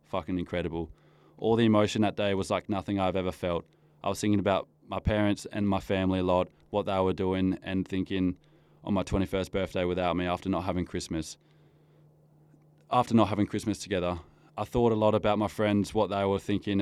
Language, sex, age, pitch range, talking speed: English, male, 20-39, 90-105 Hz, 200 wpm